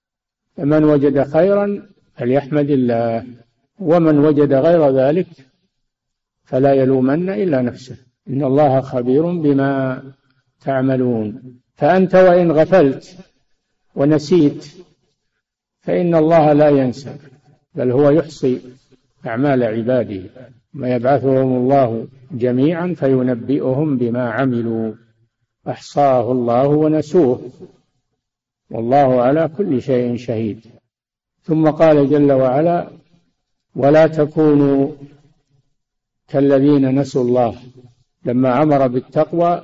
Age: 50-69